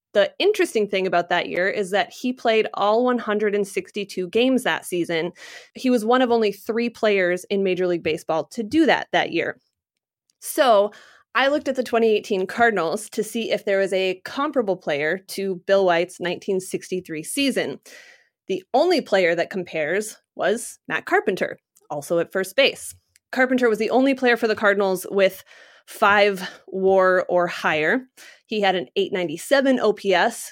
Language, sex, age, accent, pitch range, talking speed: English, female, 20-39, American, 185-245 Hz, 160 wpm